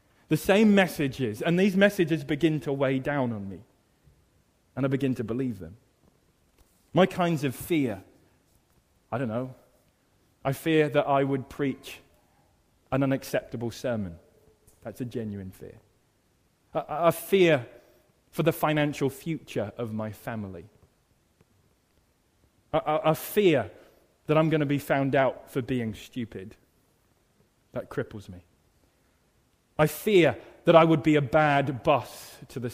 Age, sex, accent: 20-39, male, British